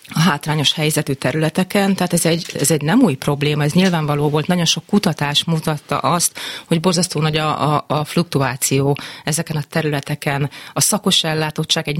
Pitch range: 140-175 Hz